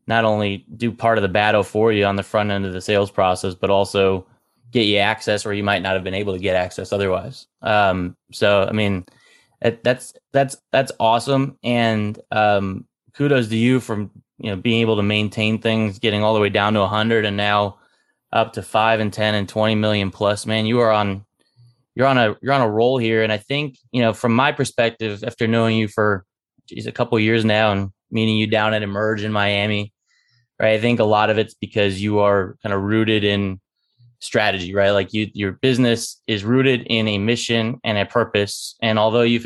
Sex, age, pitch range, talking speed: male, 20-39, 105-120 Hz, 215 wpm